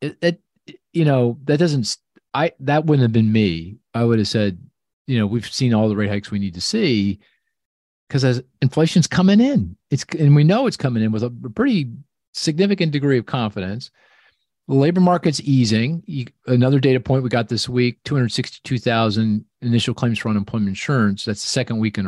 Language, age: English, 40-59